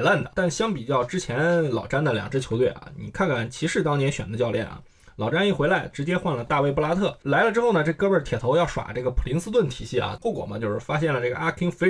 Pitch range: 130-175 Hz